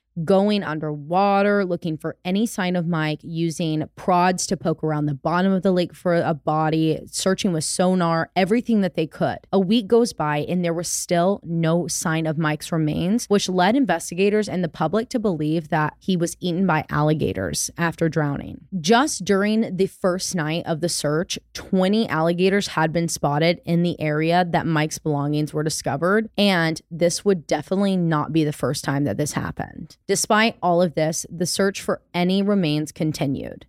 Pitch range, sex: 155-195 Hz, female